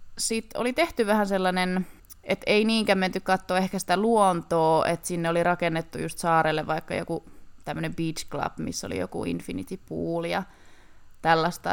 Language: Finnish